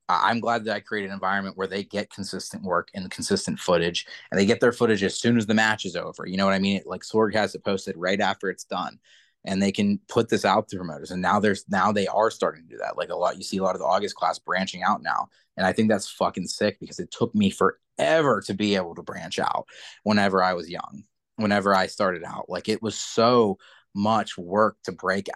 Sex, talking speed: male, 250 wpm